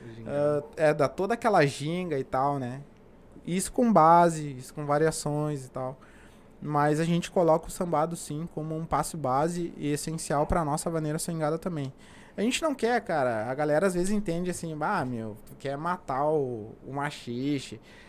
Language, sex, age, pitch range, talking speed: Portuguese, male, 20-39, 130-165 Hz, 175 wpm